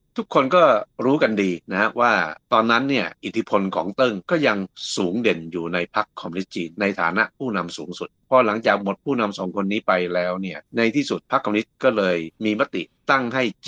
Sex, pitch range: male, 95-120 Hz